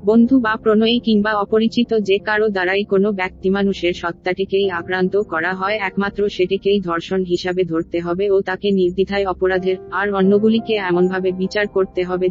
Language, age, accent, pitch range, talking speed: Bengali, 30-49, native, 185-215 Hz, 90 wpm